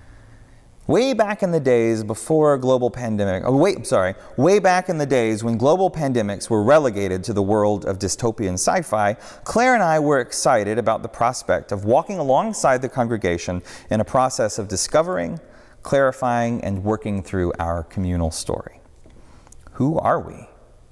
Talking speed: 160 wpm